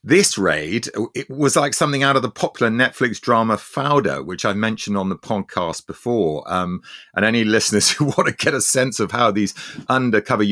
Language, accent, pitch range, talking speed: English, British, 95-115 Hz, 195 wpm